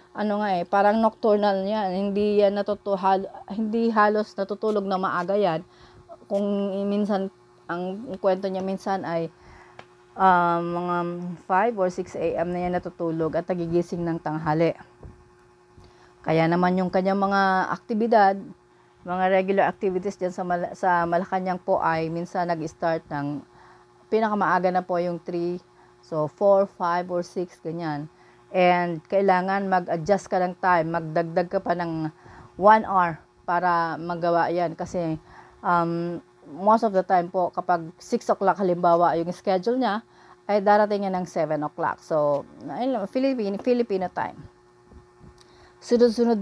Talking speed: 135 wpm